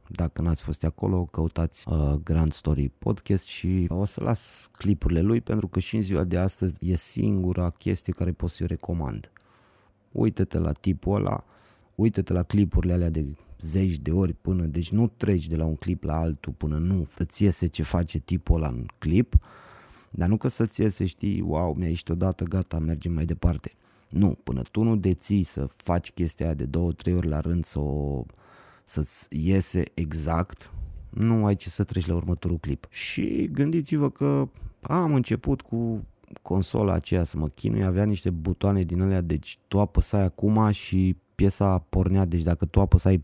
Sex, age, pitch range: male, 30-49, 80-100 Hz